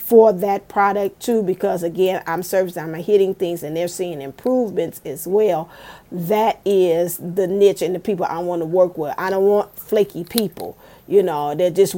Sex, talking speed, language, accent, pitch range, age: female, 190 wpm, English, American, 170-205 Hz, 40-59